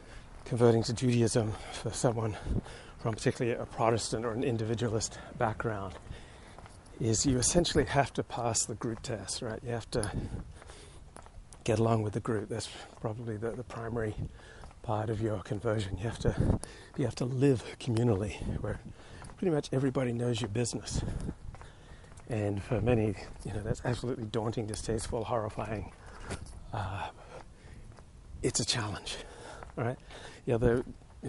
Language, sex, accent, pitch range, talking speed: English, male, American, 105-125 Hz, 140 wpm